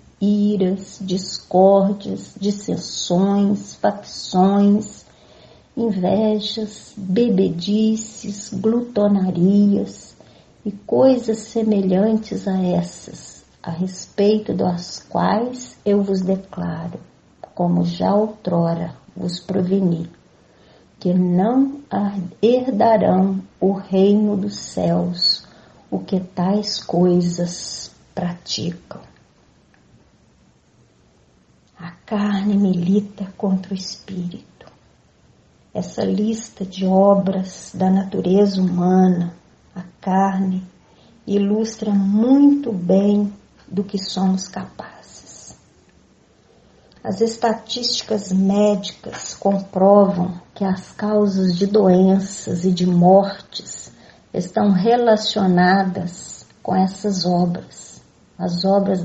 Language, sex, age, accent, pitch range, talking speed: Portuguese, female, 50-69, Brazilian, 185-210 Hz, 80 wpm